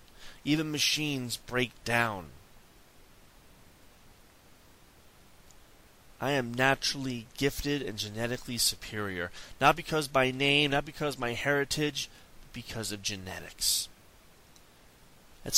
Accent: American